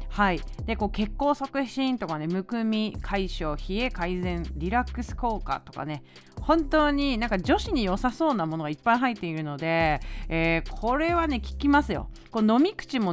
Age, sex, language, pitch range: 30-49, female, Japanese, 165-270 Hz